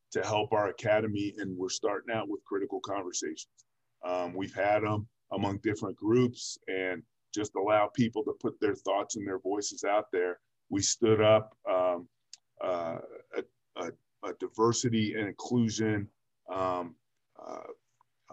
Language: English